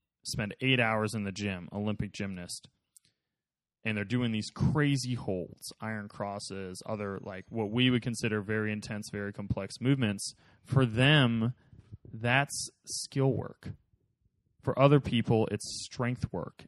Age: 20-39